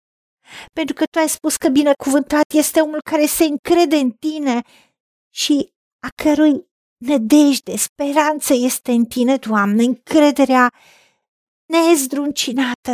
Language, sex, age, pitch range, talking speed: Romanian, female, 50-69, 235-290 Hz, 115 wpm